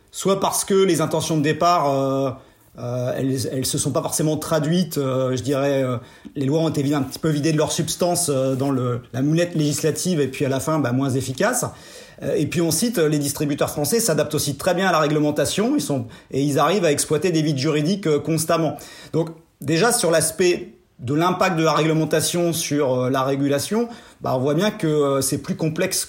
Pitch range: 135-165 Hz